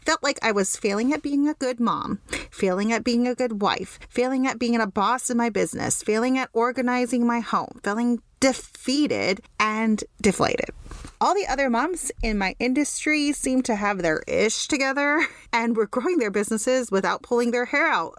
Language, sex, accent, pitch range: English, female, American, 200-255 Hz